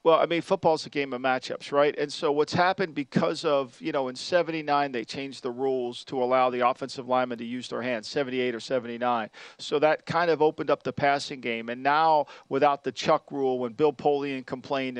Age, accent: 40-59, American